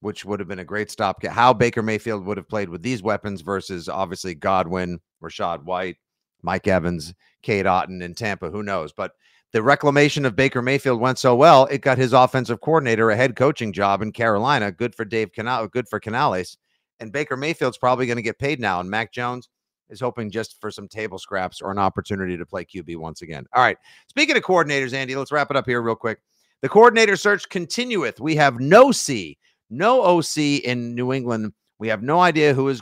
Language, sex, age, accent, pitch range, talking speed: English, male, 50-69, American, 105-145 Hz, 210 wpm